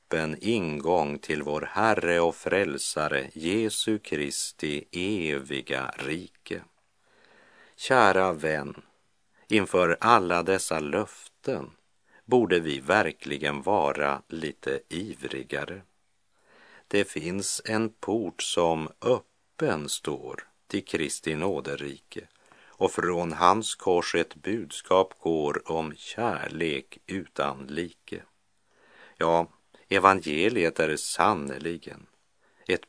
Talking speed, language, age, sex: 90 wpm, Czech, 50-69, male